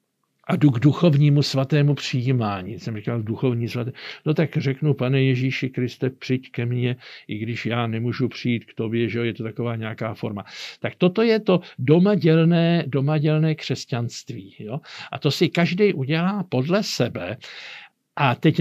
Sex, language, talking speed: male, Slovak, 160 wpm